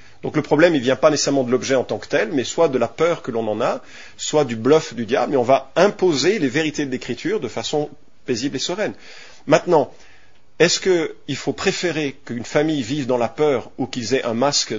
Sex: male